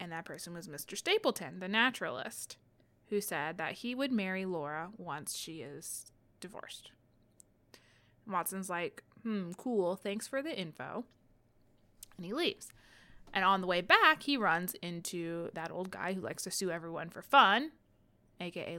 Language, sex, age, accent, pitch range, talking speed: English, female, 20-39, American, 165-215 Hz, 155 wpm